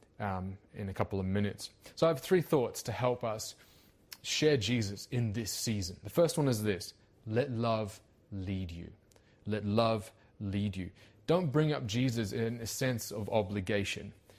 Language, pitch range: English, 100-125 Hz